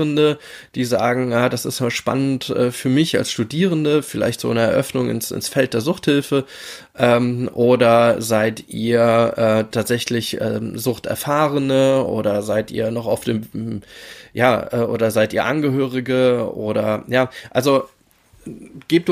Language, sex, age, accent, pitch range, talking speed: German, male, 20-39, German, 115-140 Hz, 130 wpm